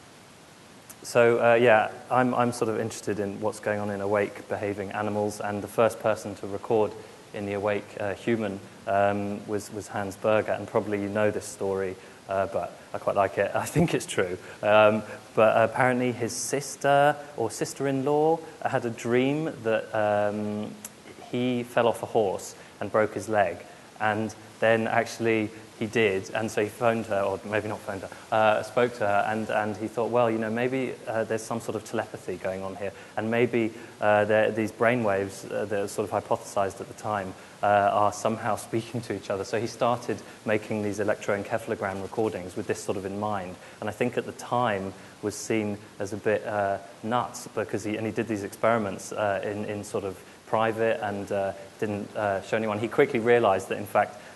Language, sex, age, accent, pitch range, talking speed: German, male, 20-39, British, 100-115 Hz, 195 wpm